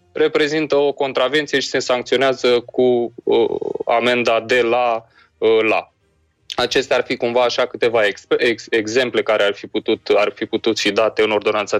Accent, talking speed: native, 135 wpm